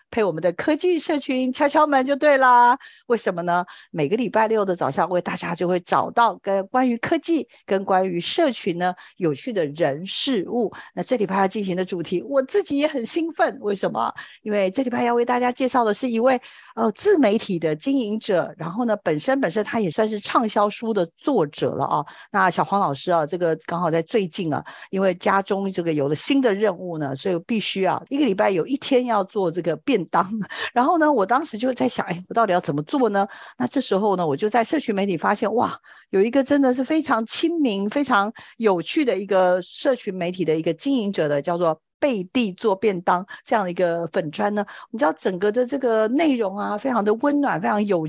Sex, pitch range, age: female, 180-255 Hz, 50-69